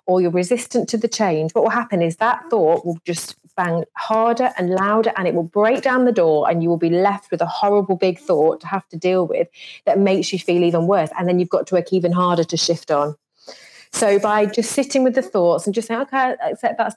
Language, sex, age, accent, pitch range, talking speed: English, female, 30-49, British, 185-245 Hz, 250 wpm